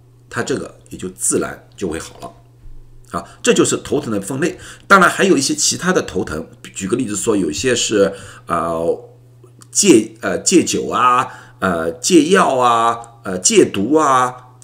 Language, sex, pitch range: Chinese, male, 120-190 Hz